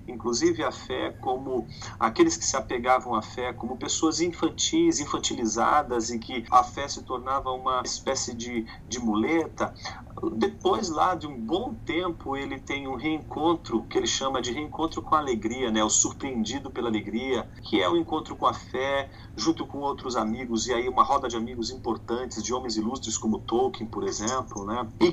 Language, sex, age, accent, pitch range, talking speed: Portuguese, male, 40-59, Brazilian, 110-155 Hz, 180 wpm